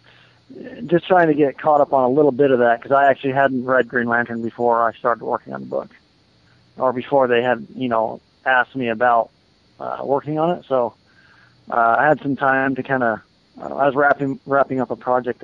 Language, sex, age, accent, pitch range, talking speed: English, male, 20-39, American, 120-135 Hz, 215 wpm